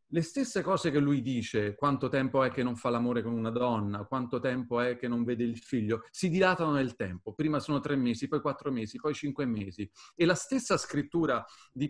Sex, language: male, Italian